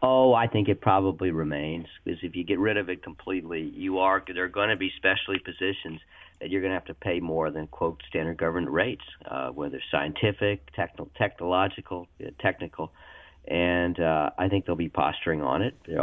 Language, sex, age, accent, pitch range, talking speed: English, male, 50-69, American, 90-105 Hz, 200 wpm